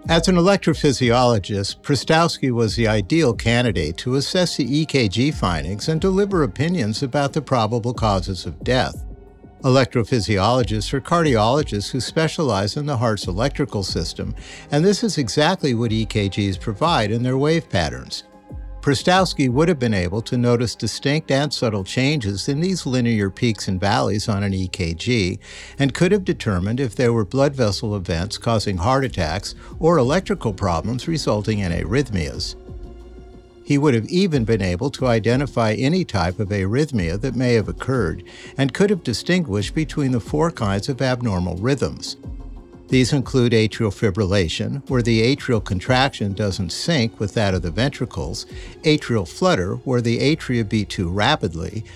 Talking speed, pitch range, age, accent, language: 150 wpm, 100-140 Hz, 60-79, American, English